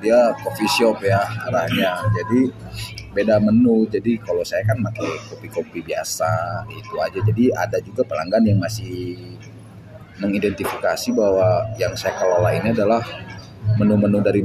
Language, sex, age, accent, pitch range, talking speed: Indonesian, male, 30-49, native, 105-125 Hz, 135 wpm